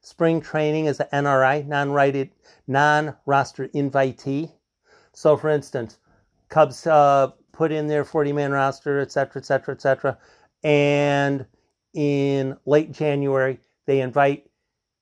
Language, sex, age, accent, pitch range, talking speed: English, male, 50-69, American, 130-155 Hz, 110 wpm